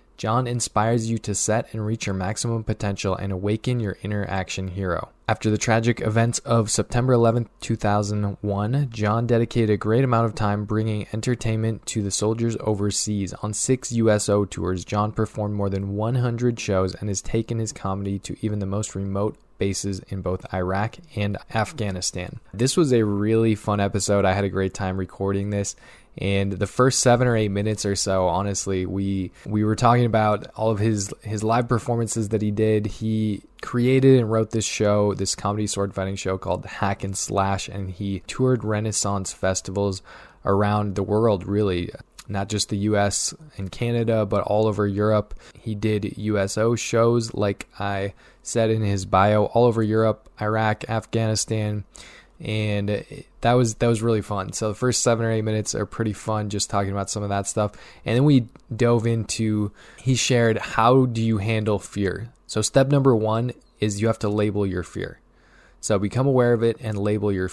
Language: English